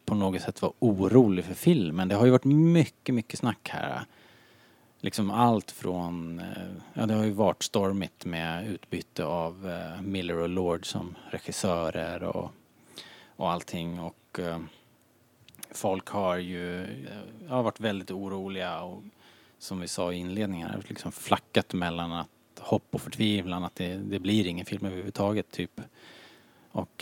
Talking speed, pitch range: 140 wpm, 95-120 Hz